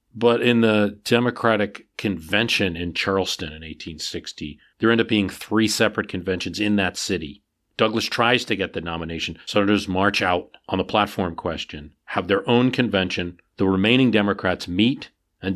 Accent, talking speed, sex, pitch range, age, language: American, 160 wpm, male, 85-115 Hz, 40-59, English